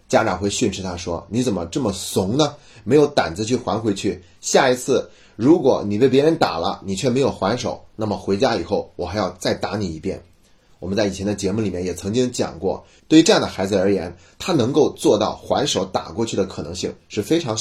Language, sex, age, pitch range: Chinese, male, 30-49, 100-130 Hz